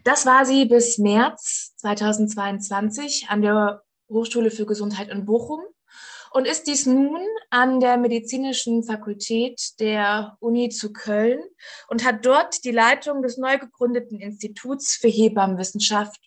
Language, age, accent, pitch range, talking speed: German, 20-39, German, 215-265 Hz, 135 wpm